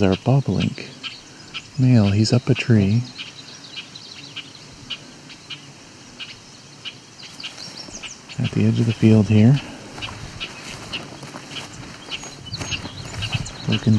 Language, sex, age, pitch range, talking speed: English, male, 40-59, 105-135 Hz, 65 wpm